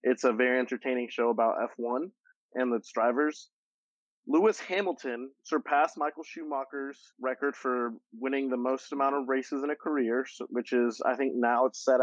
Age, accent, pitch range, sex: 30-49, American, 120-145 Hz, male